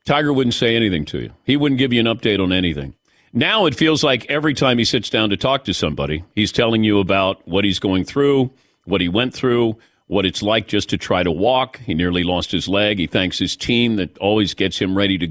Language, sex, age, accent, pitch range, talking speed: English, male, 50-69, American, 100-130 Hz, 245 wpm